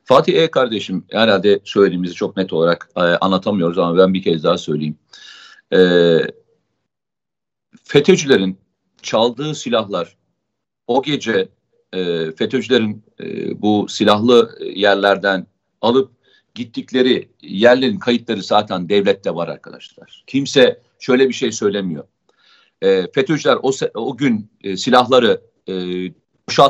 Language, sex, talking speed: Turkish, male, 110 wpm